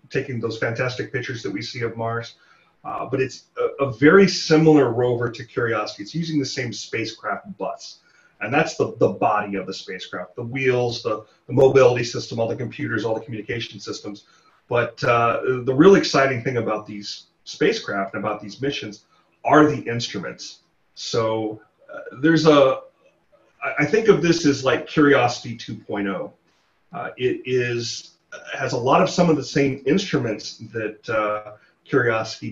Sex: male